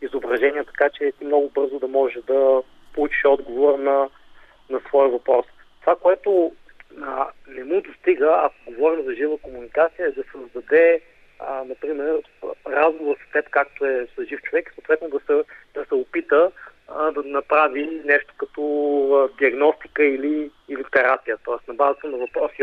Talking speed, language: 150 wpm, Bulgarian